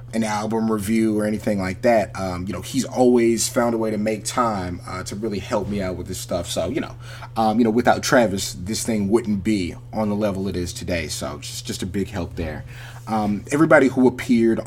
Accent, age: American, 30-49